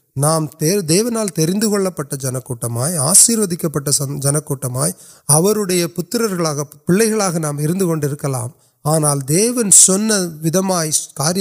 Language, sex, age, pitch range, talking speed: Urdu, male, 30-49, 150-190 Hz, 70 wpm